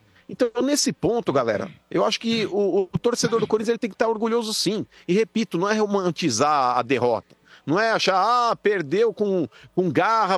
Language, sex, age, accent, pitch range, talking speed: Portuguese, male, 50-69, Brazilian, 170-240 Hz, 185 wpm